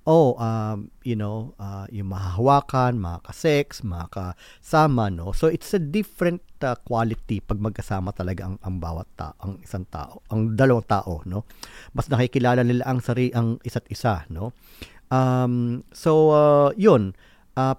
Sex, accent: male, native